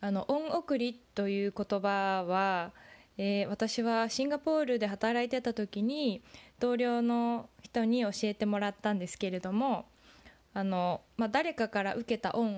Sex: female